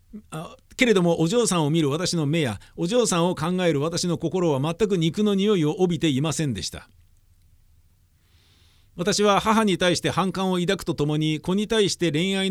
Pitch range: 145-195 Hz